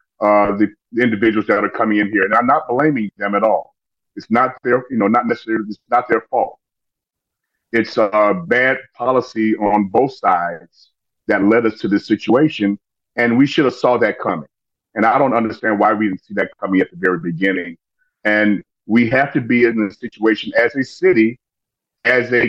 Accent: American